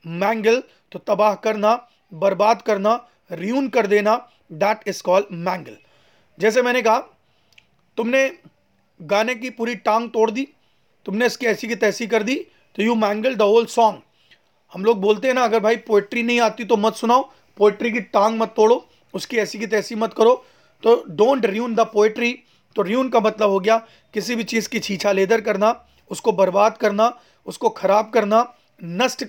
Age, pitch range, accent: 30-49, 205-240 Hz, native